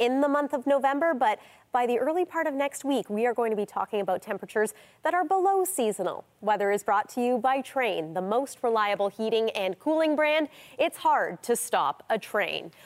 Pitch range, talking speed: 220-290 Hz, 210 wpm